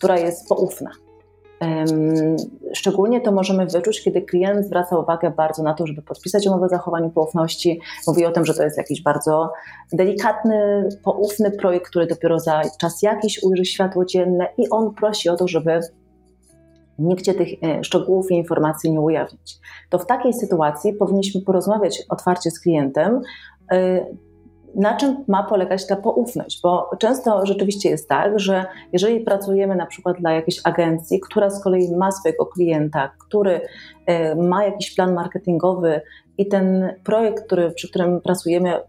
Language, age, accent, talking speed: Polish, 30-49, native, 150 wpm